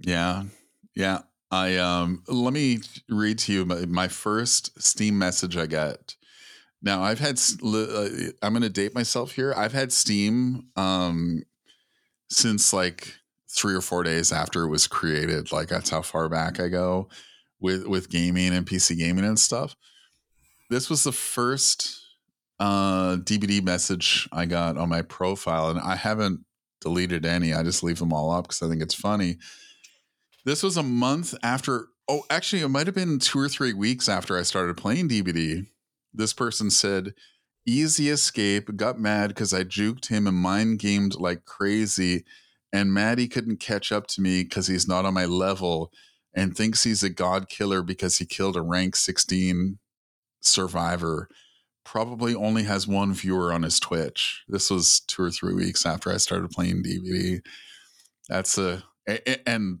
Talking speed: 170 wpm